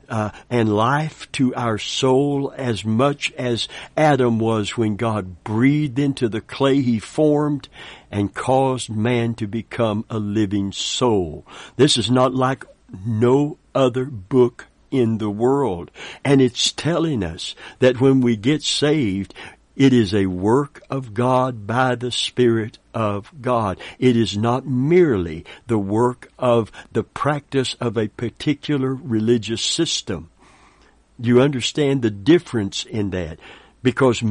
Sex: male